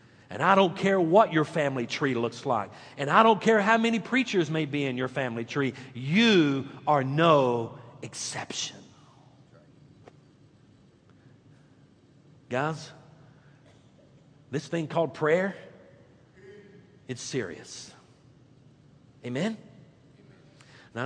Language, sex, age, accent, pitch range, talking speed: English, male, 50-69, American, 140-175 Hz, 105 wpm